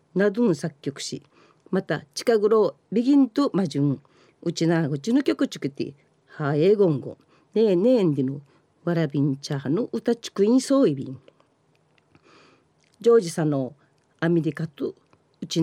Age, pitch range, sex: 40-59, 155-235 Hz, female